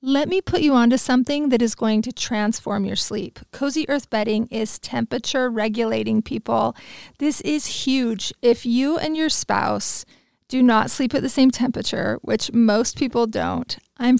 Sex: female